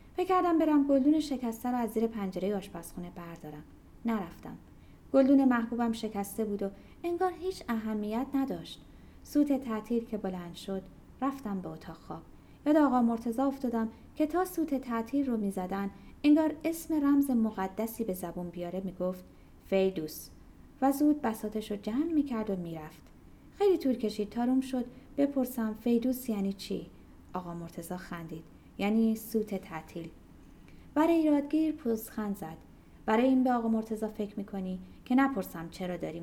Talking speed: 150 wpm